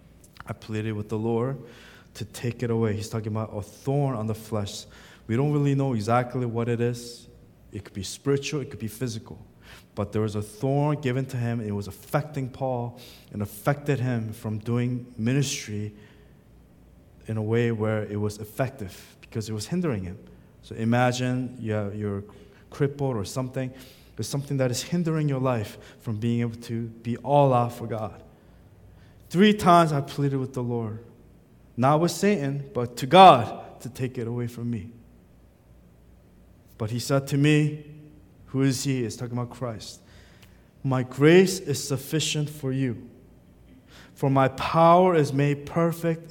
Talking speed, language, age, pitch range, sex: 165 wpm, English, 20-39, 110-150 Hz, male